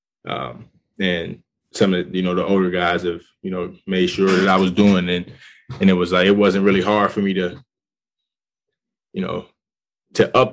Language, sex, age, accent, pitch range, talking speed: English, male, 20-39, American, 95-105 Hz, 200 wpm